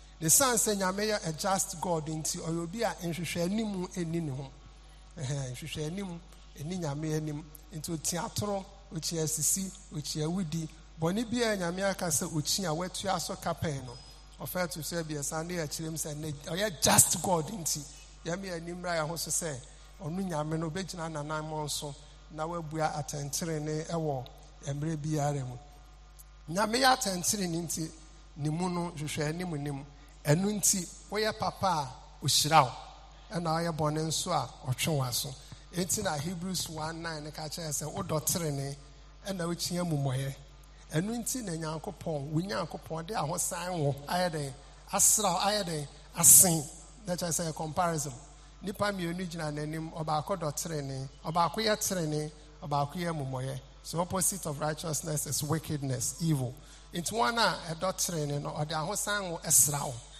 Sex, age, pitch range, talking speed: male, 50-69, 150-175 Hz, 85 wpm